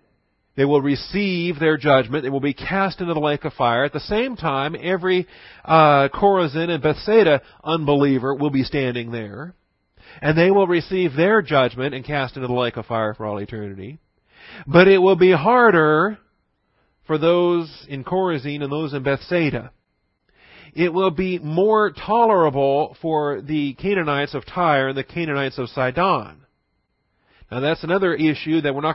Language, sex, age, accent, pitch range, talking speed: English, male, 40-59, American, 135-170 Hz, 165 wpm